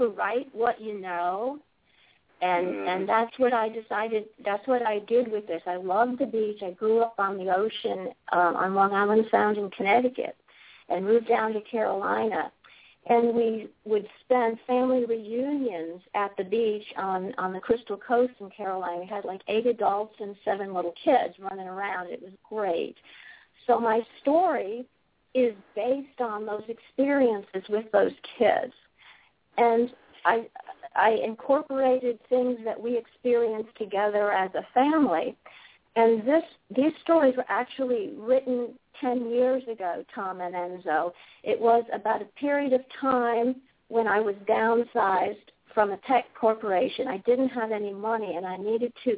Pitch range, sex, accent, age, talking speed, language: 200-250 Hz, female, American, 50-69, 155 wpm, English